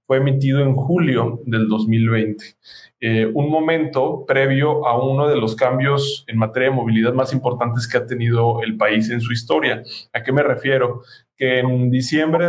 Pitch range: 115-140 Hz